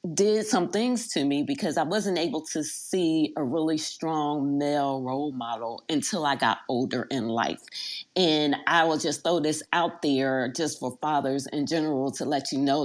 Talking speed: 185 wpm